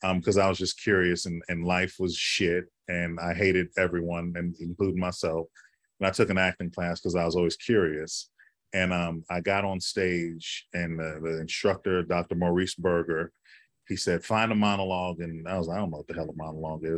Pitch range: 85-105 Hz